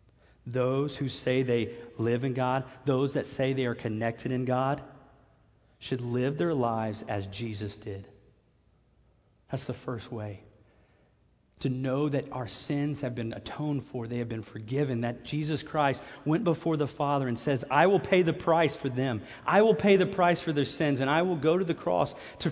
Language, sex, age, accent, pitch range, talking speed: English, male, 30-49, American, 110-150 Hz, 190 wpm